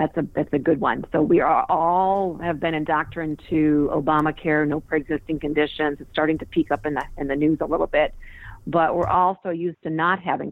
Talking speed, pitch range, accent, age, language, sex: 215 wpm, 155-185 Hz, American, 40-59, English, female